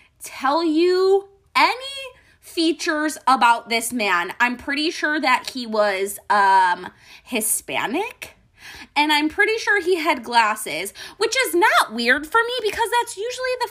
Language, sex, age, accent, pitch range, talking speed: English, female, 20-39, American, 235-390 Hz, 140 wpm